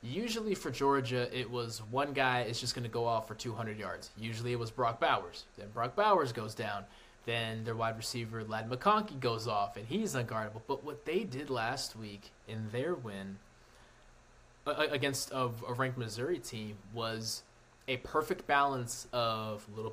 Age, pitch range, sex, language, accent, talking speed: 20-39, 110-130 Hz, male, English, American, 175 wpm